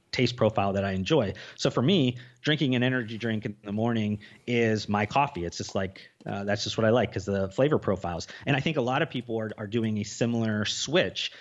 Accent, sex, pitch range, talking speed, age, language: American, male, 105-130 Hz, 230 wpm, 30-49, English